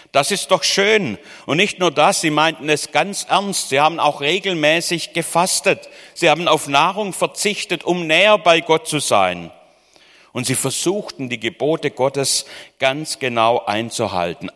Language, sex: German, male